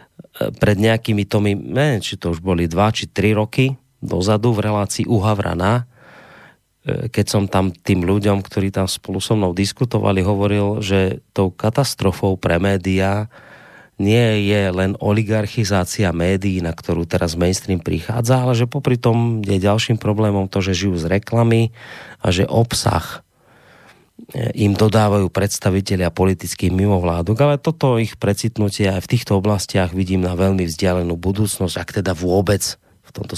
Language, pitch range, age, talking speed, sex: Slovak, 95-115 Hz, 30-49, 145 wpm, male